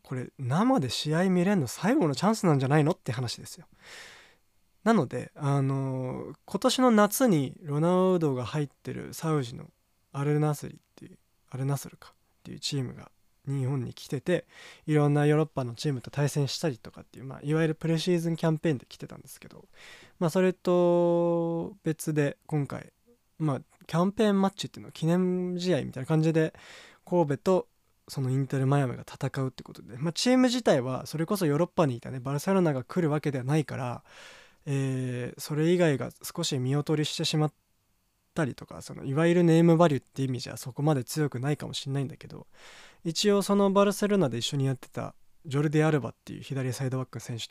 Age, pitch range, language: 20-39, 135-175 Hz, Japanese